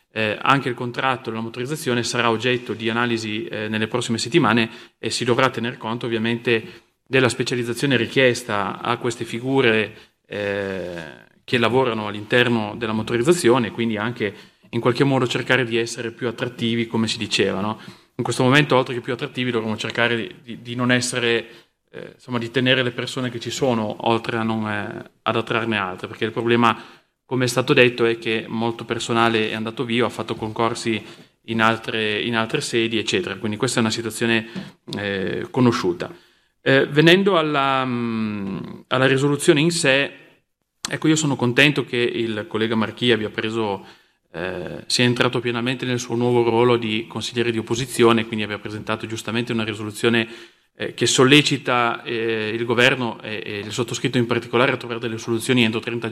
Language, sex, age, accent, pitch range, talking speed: Italian, male, 30-49, native, 110-125 Hz, 170 wpm